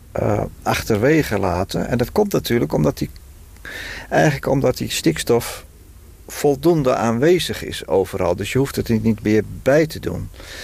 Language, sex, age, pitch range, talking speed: Dutch, male, 50-69, 95-135 Hz, 145 wpm